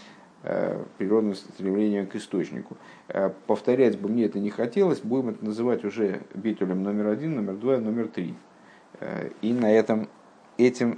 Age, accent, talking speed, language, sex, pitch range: 50-69, native, 135 wpm, Russian, male, 115-145 Hz